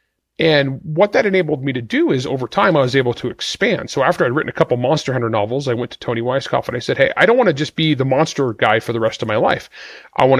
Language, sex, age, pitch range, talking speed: English, male, 30-49, 120-155 Hz, 290 wpm